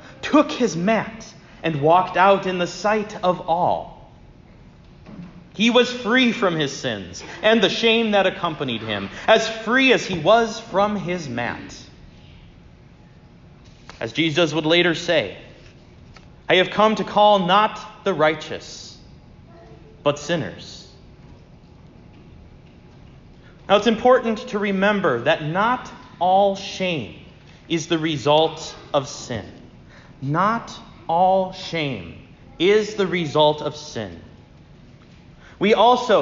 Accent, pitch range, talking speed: American, 160-230 Hz, 115 wpm